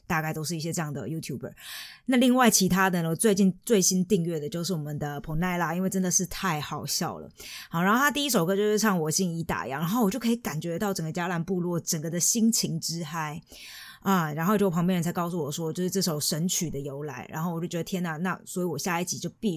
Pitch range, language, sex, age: 165-200 Hz, Chinese, female, 20-39